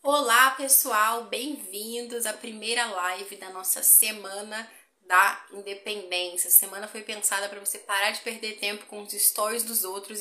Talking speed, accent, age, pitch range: 145 wpm, Brazilian, 10-29, 195-230 Hz